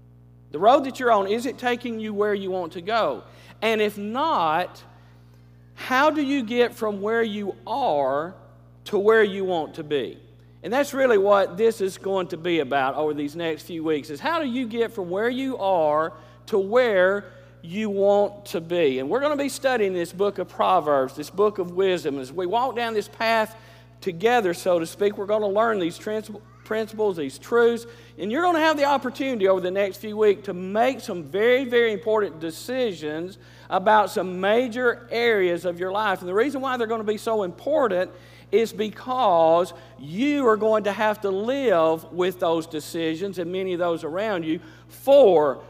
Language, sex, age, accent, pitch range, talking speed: English, male, 50-69, American, 165-230 Hz, 195 wpm